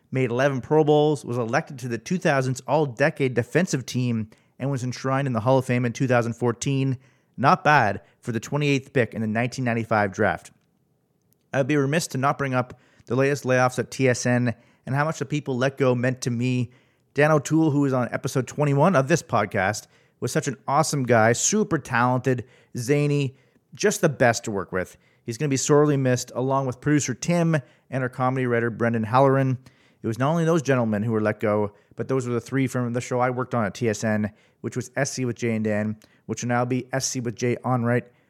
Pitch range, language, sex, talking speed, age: 120-145 Hz, English, male, 205 wpm, 40-59